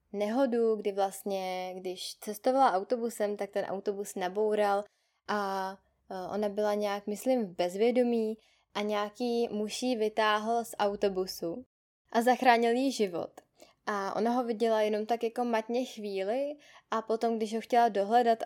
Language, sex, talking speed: Czech, female, 135 wpm